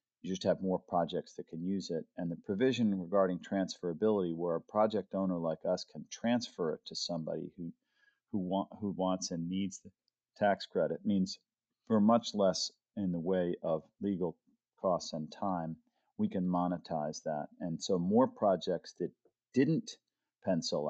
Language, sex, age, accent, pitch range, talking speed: English, male, 40-59, American, 85-105 Hz, 160 wpm